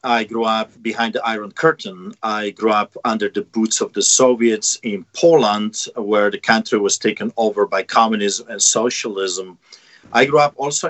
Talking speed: 175 wpm